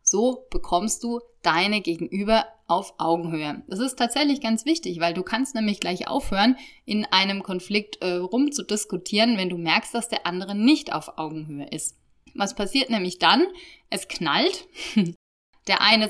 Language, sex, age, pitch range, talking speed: German, female, 30-49, 175-245 Hz, 155 wpm